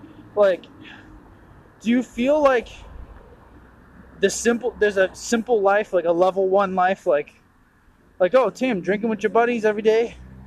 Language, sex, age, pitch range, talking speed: English, male, 20-39, 165-225 Hz, 150 wpm